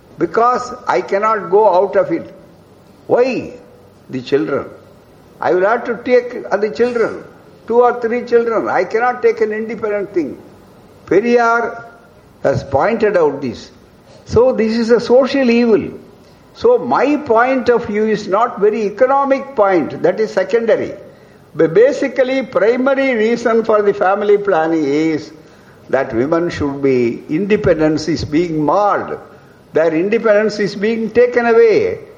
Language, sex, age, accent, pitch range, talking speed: Tamil, male, 60-79, native, 195-275 Hz, 140 wpm